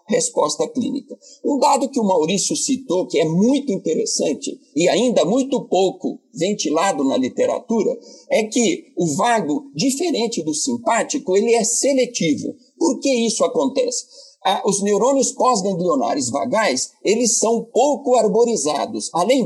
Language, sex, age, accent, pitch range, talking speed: English, male, 60-79, Brazilian, 200-275 Hz, 135 wpm